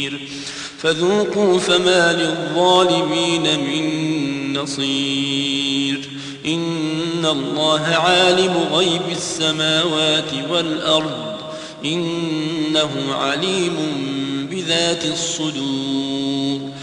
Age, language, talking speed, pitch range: 40-59, Arabic, 55 wpm, 140-185 Hz